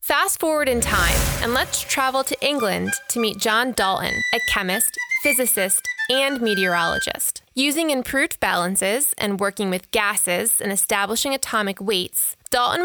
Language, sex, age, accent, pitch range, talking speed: English, female, 20-39, American, 200-275 Hz, 140 wpm